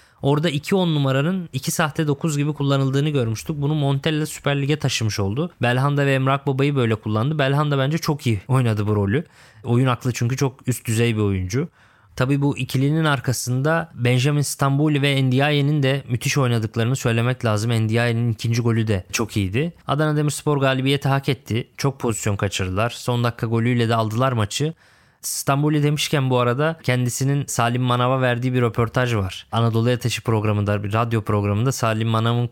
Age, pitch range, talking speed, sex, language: 20-39, 115-145 Hz, 165 wpm, male, Turkish